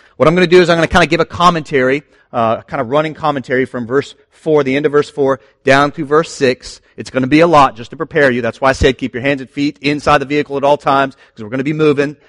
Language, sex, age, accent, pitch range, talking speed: English, male, 40-59, American, 125-160 Hz, 305 wpm